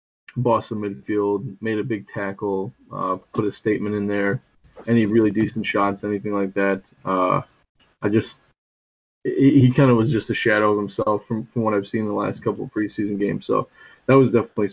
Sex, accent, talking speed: male, American, 200 wpm